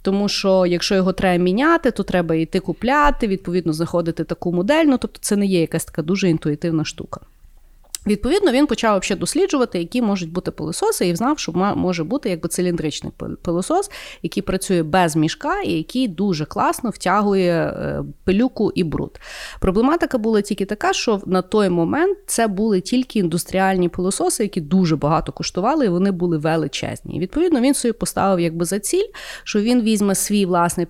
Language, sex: Ukrainian, female